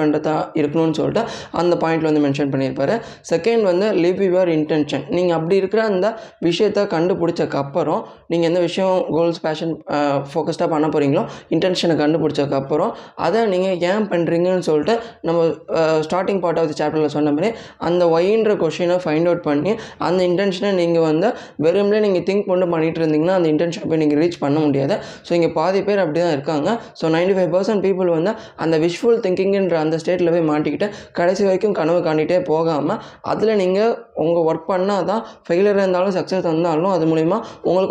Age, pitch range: 20-39, 155-195 Hz